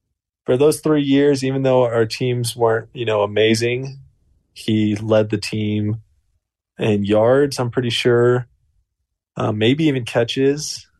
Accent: American